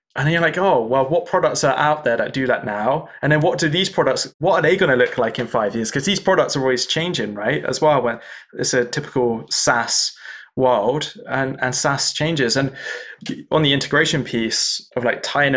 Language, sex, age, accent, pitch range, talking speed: English, male, 20-39, British, 125-150 Hz, 225 wpm